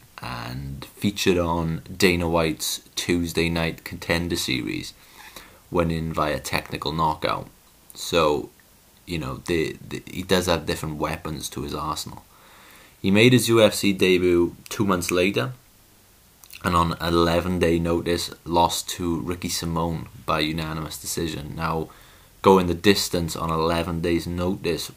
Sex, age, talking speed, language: male, 30-49, 125 wpm, English